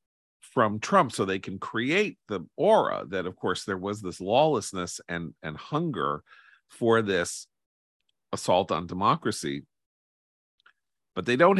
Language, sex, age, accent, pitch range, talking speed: English, male, 40-59, American, 85-115 Hz, 135 wpm